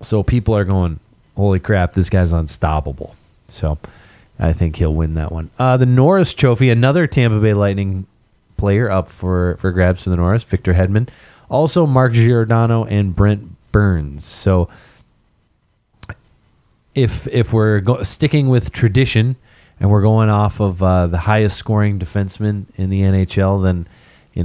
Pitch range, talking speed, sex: 95-120 Hz, 155 wpm, male